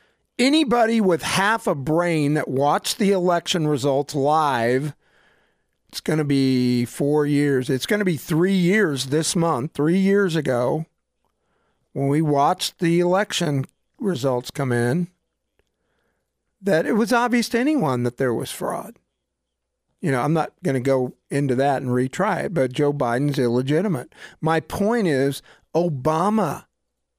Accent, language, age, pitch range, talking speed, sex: American, English, 50-69, 135-185 Hz, 145 wpm, male